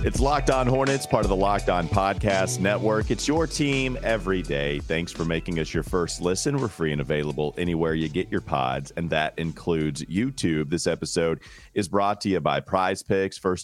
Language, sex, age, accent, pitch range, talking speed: English, male, 40-59, American, 80-110 Hz, 200 wpm